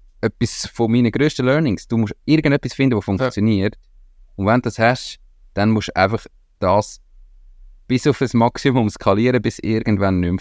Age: 20-39